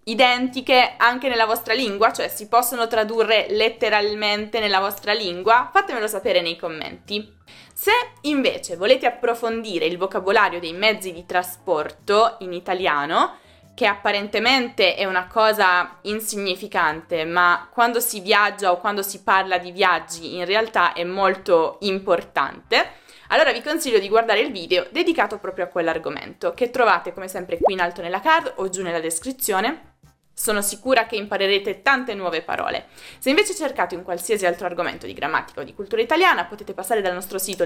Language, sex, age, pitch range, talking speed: Italian, female, 20-39, 180-245 Hz, 160 wpm